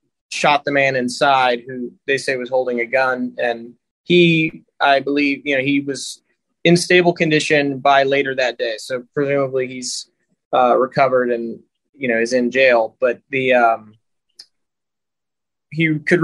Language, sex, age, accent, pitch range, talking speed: English, male, 20-39, American, 125-150 Hz, 155 wpm